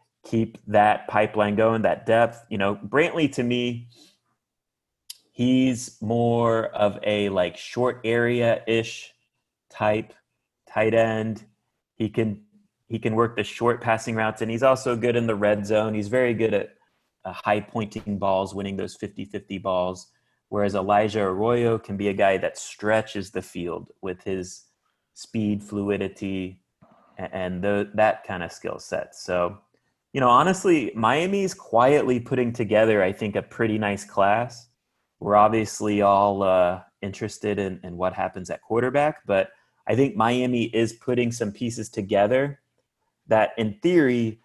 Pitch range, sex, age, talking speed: 100-115 Hz, male, 30-49, 145 wpm